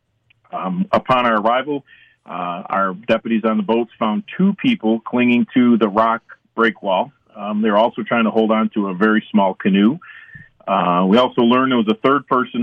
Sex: male